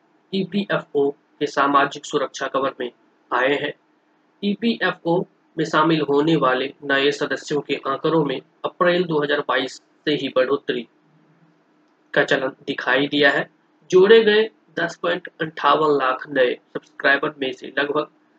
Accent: native